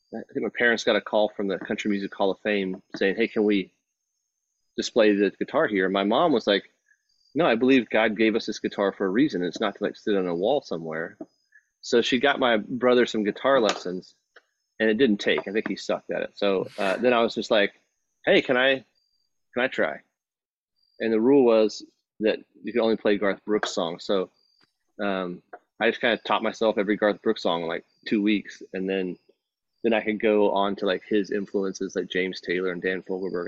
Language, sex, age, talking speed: English, male, 30-49, 220 wpm